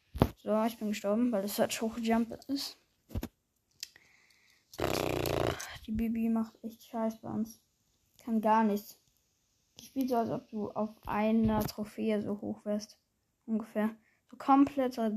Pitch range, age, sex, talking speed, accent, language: 210-240 Hz, 20-39, female, 140 wpm, German, German